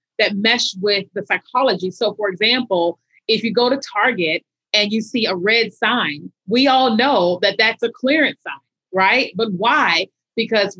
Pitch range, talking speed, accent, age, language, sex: 205-250 Hz, 170 wpm, American, 30-49, English, female